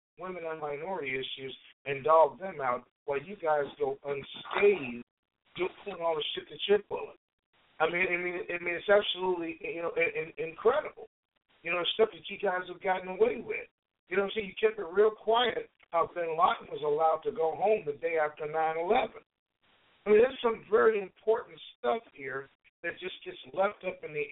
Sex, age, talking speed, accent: male, 50-69, 185 wpm, American